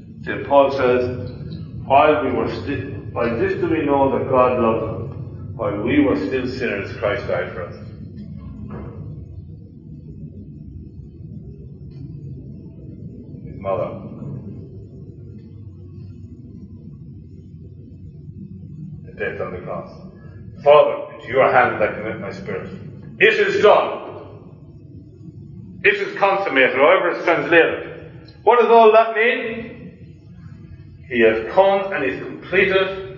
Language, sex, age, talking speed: English, male, 50-69, 110 wpm